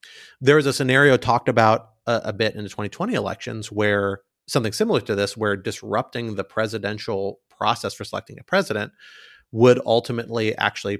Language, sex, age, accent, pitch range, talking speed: English, male, 30-49, American, 105-120 Hz, 165 wpm